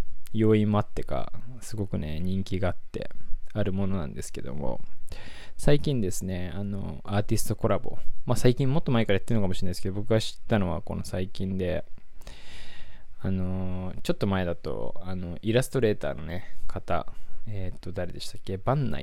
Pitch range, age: 90-110 Hz, 20-39